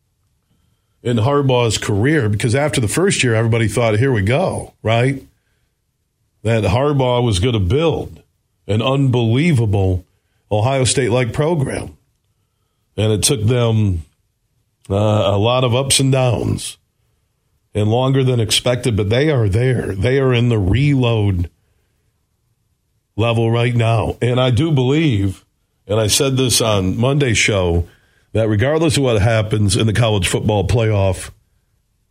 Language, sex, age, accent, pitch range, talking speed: English, male, 50-69, American, 105-135 Hz, 135 wpm